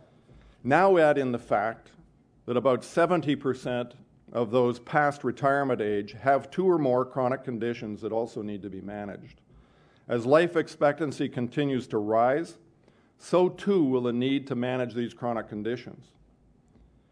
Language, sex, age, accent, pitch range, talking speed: English, male, 50-69, American, 120-150 Hz, 145 wpm